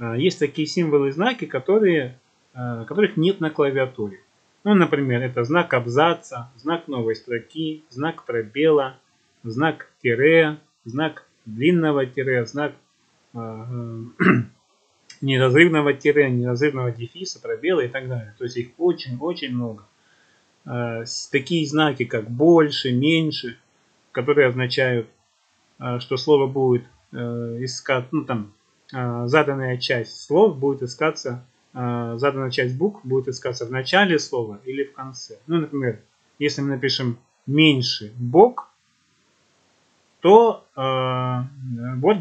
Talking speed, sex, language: 110 wpm, male, Russian